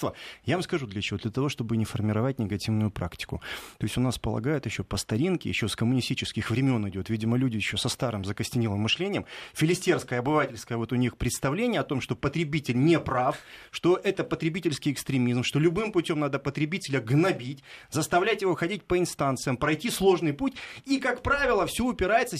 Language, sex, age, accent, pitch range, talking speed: Russian, male, 30-49, native, 140-205 Hz, 180 wpm